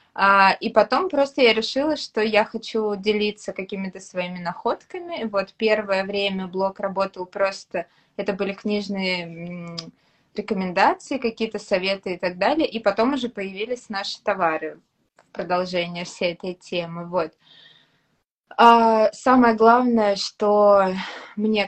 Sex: female